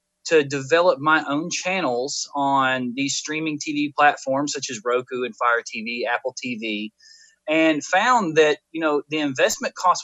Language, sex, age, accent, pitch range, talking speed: English, male, 20-39, American, 140-205 Hz, 155 wpm